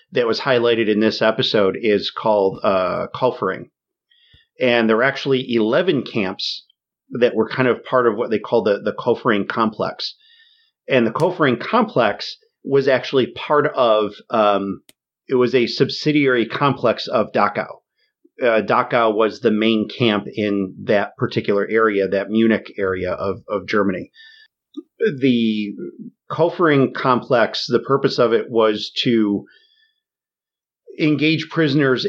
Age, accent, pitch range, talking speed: 40-59, American, 105-150 Hz, 135 wpm